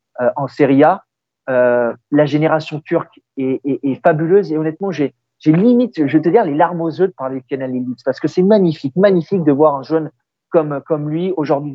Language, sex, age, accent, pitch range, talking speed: French, male, 40-59, French, 135-160 Hz, 215 wpm